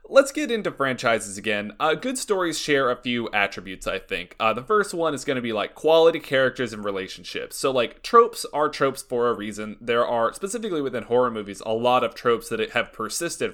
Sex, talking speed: male, 215 wpm